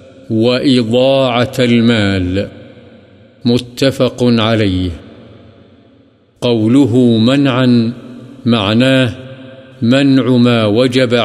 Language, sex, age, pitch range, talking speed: Urdu, male, 50-69, 120-135 Hz, 55 wpm